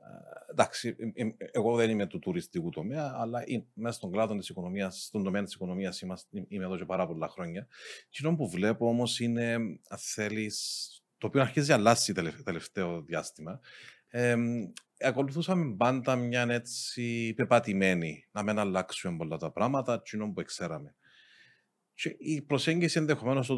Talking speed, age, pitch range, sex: 130 wpm, 40-59, 100-130 Hz, male